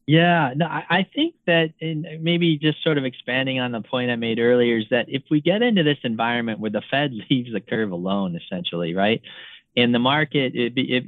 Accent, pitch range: American, 115-145 Hz